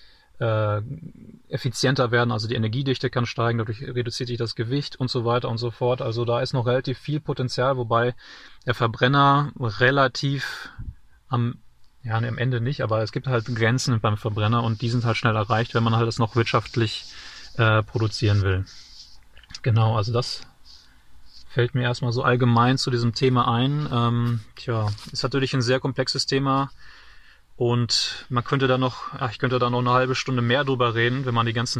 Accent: German